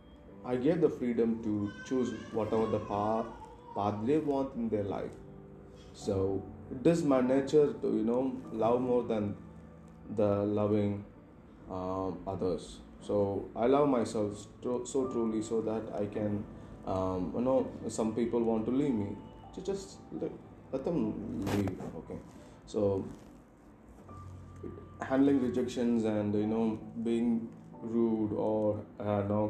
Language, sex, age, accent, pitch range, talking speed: Tamil, male, 20-39, native, 100-125 Hz, 135 wpm